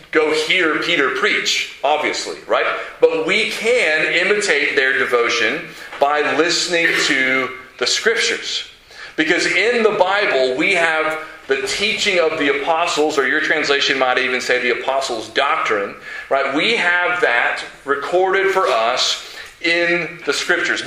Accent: American